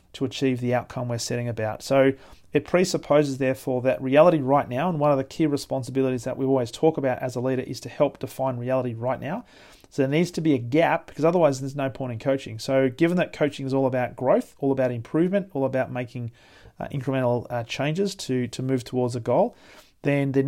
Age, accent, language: 40-59, Australian, English